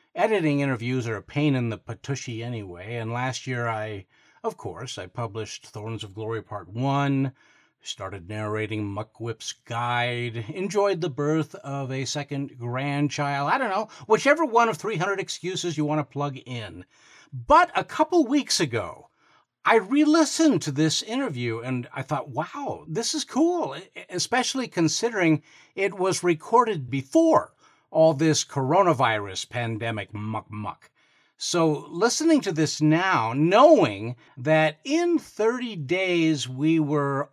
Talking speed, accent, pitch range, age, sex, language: 140 wpm, American, 120-165 Hz, 50-69, male, English